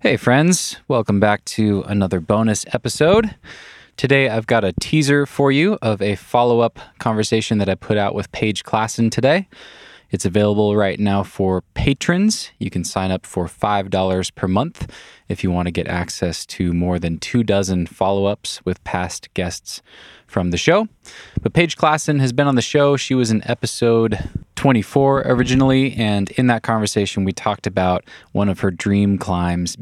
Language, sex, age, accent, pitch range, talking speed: English, male, 20-39, American, 95-120 Hz, 170 wpm